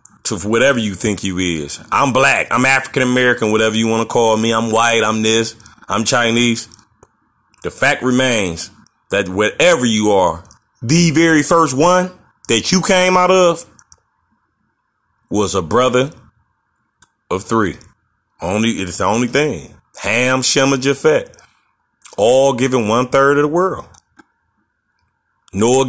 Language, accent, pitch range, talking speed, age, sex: English, American, 110-135 Hz, 140 wpm, 30-49, male